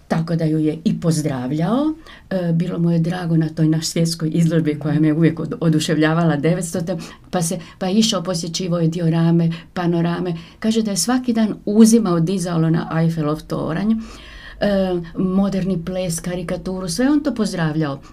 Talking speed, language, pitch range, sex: 155 wpm, Croatian, 165-210 Hz, female